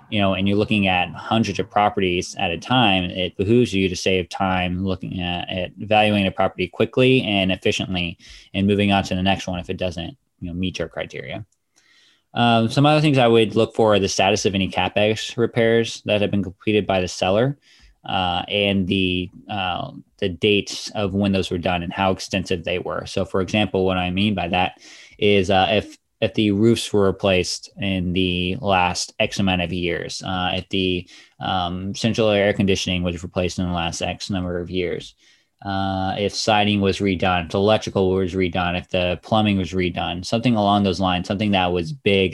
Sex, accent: male, American